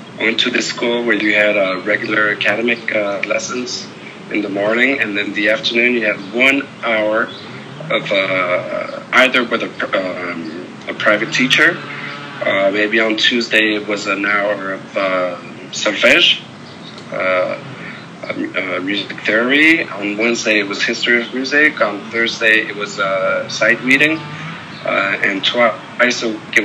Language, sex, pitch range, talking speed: English, male, 105-120 Hz, 145 wpm